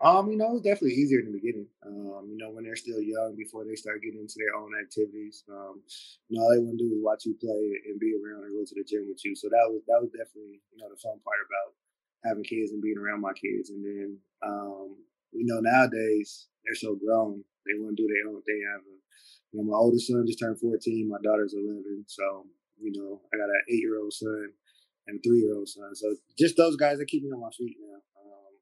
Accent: American